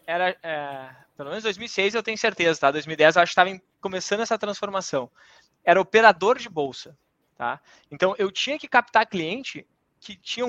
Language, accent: Portuguese, Brazilian